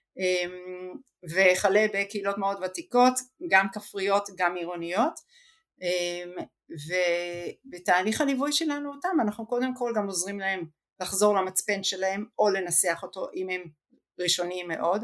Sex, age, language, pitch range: female, 50-69, Hebrew, 180-240 Hz